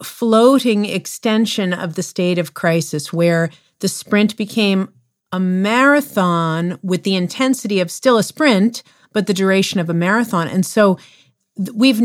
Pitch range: 180-235 Hz